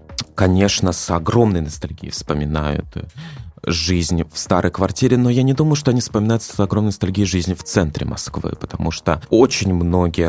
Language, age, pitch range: Russian, 20-39, 85-105 Hz